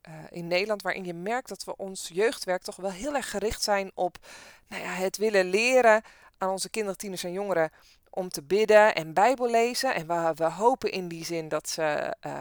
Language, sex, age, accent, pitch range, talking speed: Dutch, female, 20-39, Dutch, 180-235 Hz, 210 wpm